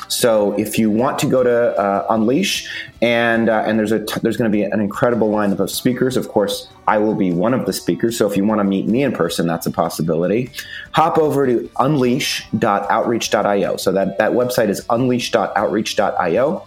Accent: American